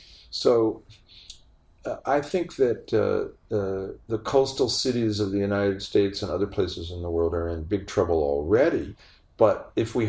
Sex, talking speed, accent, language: male, 165 wpm, American, English